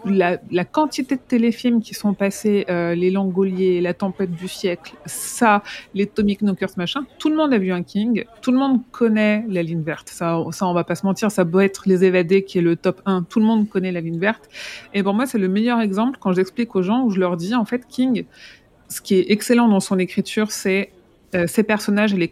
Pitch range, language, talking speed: 180-220 Hz, French, 240 wpm